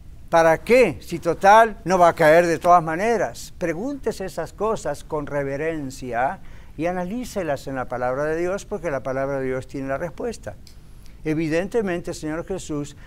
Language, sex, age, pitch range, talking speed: English, male, 60-79, 140-180 Hz, 160 wpm